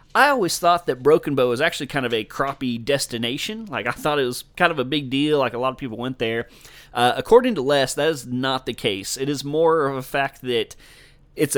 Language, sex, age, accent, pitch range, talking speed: English, male, 30-49, American, 120-145 Hz, 245 wpm